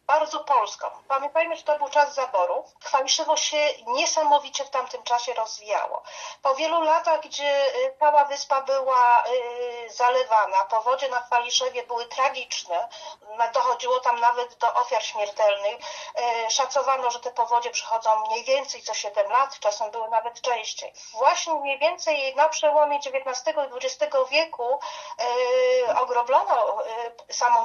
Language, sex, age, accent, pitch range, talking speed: Polish, female, 40-59, native, 240-315 Hz, 130 wpm